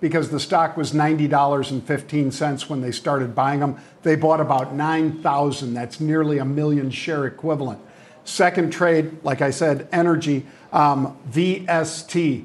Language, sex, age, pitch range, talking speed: English, male, 50-69, 140-165 Hz, 135 wpm